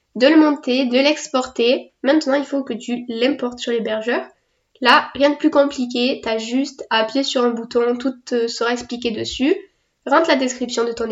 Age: 10-29